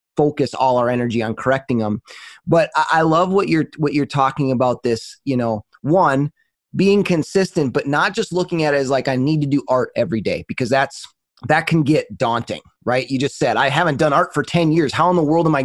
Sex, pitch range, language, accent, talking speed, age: male, 125-155 Hz, English, American, 230 wpm, 30-49